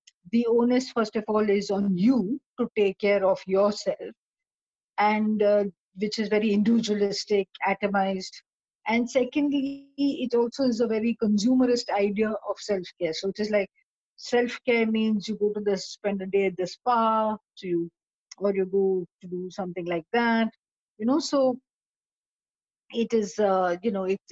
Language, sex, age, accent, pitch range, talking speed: English, female, 50-69, Indian, 185-230 Hz, 165 wpm